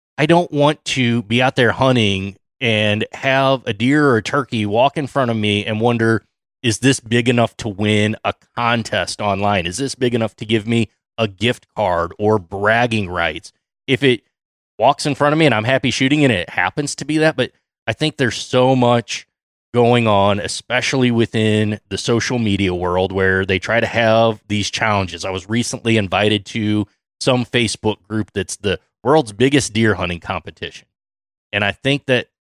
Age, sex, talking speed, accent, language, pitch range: 20-39, male, 185 wpm, American, English, 100-130 Hz